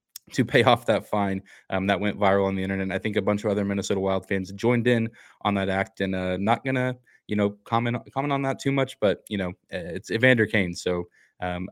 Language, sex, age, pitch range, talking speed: English, male, 20-39, 100-120 Hz, 250 wpm